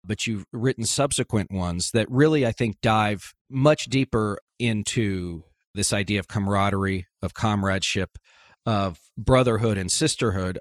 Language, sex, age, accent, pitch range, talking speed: English, male, 40-59, American, 95-125 Hz, 130 wpm